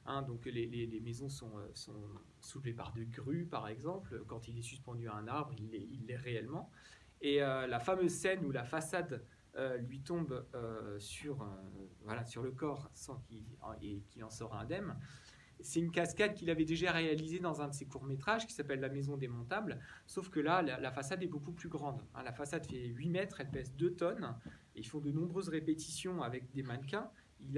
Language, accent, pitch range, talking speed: French, French, 125-165 Hz, 220 wpm